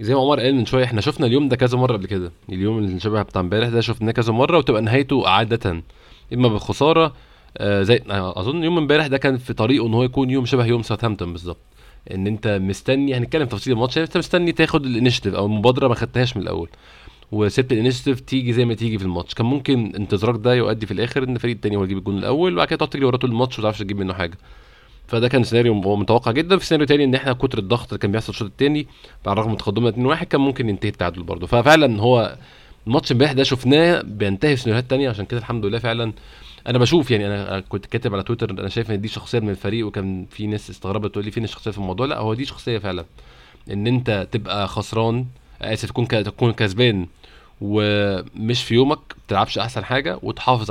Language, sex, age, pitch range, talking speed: Arabic, male, 20-39, 105-125 Hz, 215 wpm